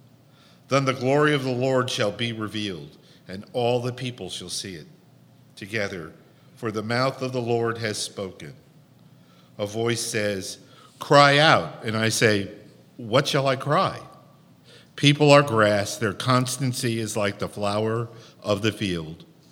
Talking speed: 150 wpm